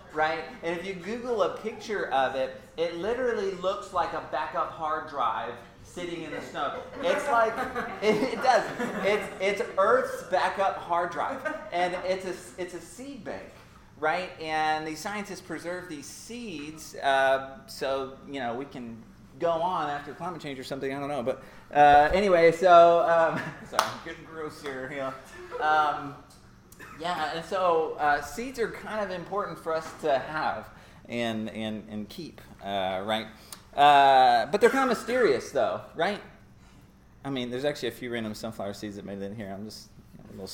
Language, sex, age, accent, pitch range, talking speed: English, male, 30-49, American, 130-195 Hz, 175 wpm